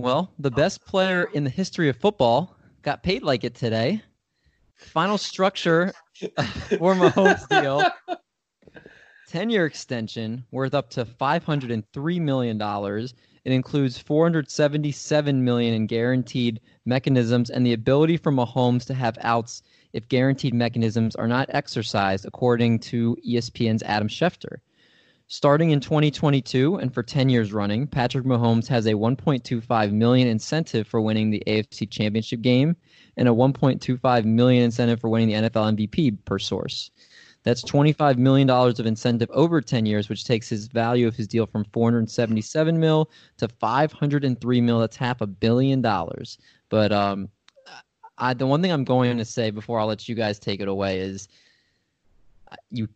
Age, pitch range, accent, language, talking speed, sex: 20-39, 115-145 Hz, American, English, 150 wpm, male